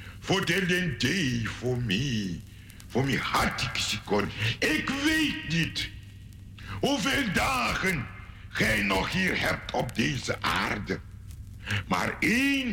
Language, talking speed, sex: Dutch, 120 wpm, male